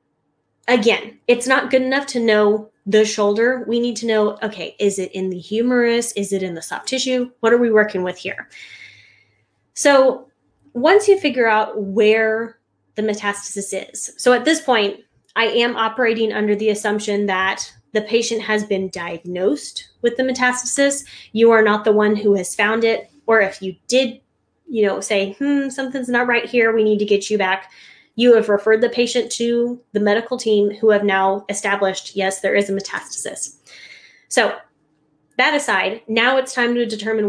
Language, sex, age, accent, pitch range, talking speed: English, female, 10-29, American, 205-245 Hz, 180 wpm